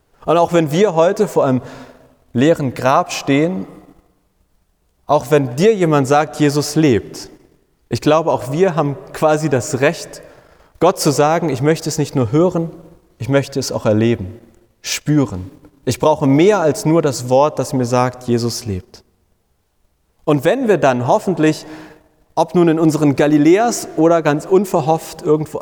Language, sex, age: German, male, 30-49